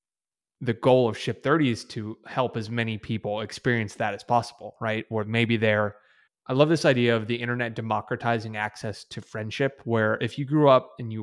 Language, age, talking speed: English, 20-39, 200 wpm